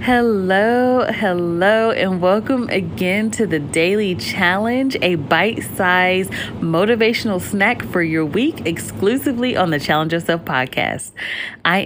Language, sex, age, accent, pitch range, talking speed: English, female, 30-49, American, 165-225 Hz, 115 wpm